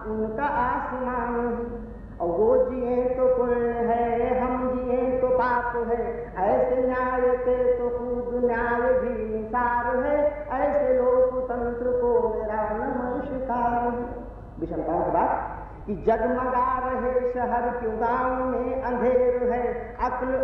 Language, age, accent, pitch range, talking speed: Hindi, 40-59, native, 240-255 Hz, 105 wpm